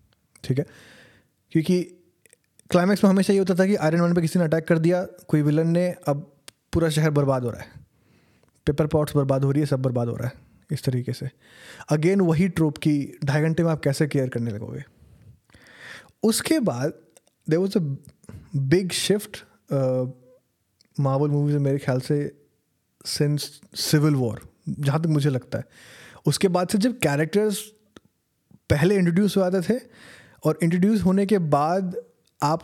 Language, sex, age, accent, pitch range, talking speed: Hindi, male, 20-39, native, 135-180 Hz, 160 wpm